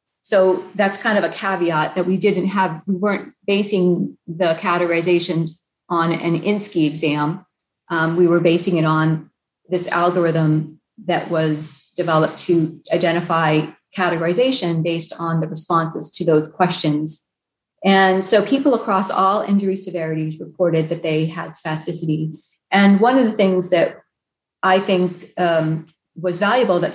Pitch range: 165-195 Hz